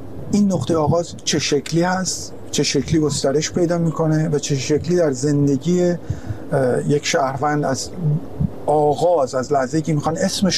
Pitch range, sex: 140-195 Hz, male